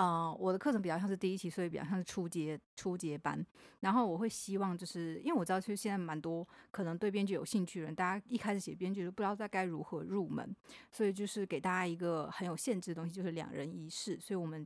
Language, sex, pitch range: Chinese, female, 170-210 Hz